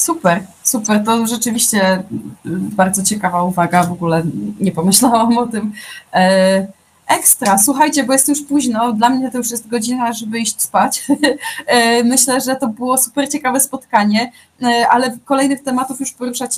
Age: 20-39